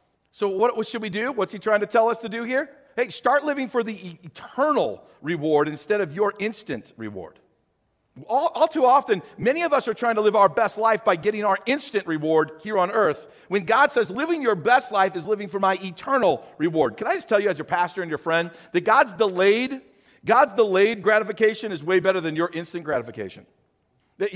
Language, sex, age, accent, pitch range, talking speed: English, male, 50-69, American, 160-225 Hz, 210 wpm